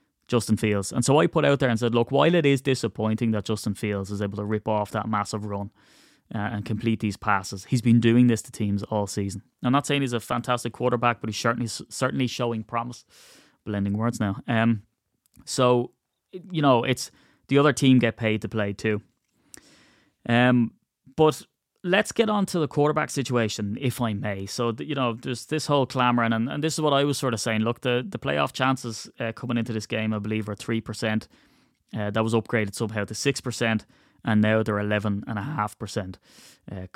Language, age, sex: English, 20-39, male